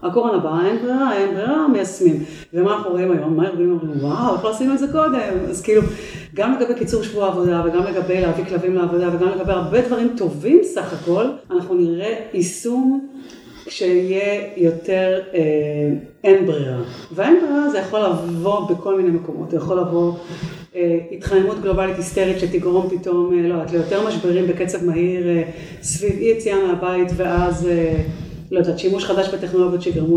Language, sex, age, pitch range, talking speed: Hebrew, female, 40-59, 170-200 Hz, 155 wpm